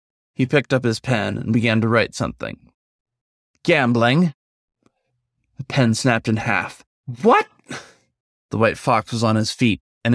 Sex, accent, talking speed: male, American, 150 wpm